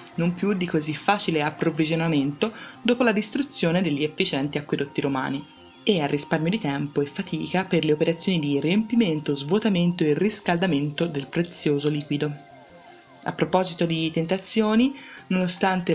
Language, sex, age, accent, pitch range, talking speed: Italian, female, 20-39, native, 155-200 Hz, 135 wpm